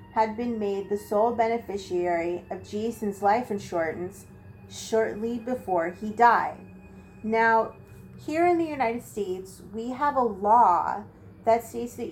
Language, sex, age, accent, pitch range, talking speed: English, female, 30-49, American, 185-225 Hz, 135 wpm